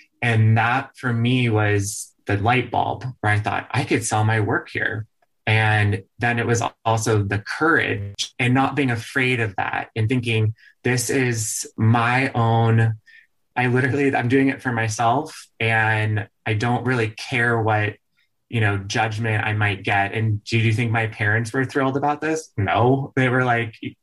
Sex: male